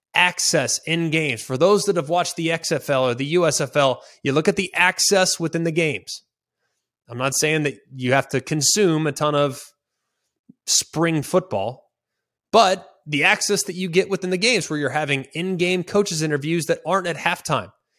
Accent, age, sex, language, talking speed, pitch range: American, 20-39, male, English, 175 wpm, 135-185 Hz